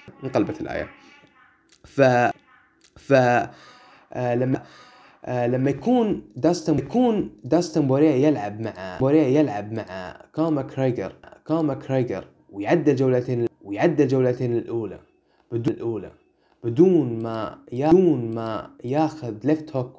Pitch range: 120-155 Hz